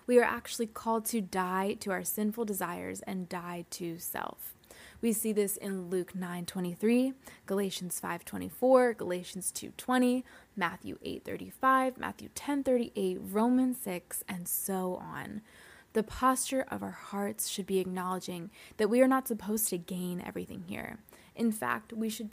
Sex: female